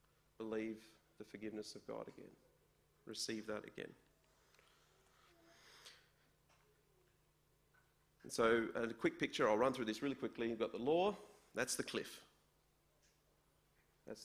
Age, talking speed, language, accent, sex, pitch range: 40-59, 120 wpm, English, Australian, male, 115-140 Hz